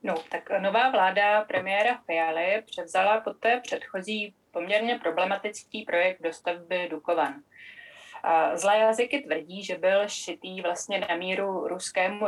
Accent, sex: native, female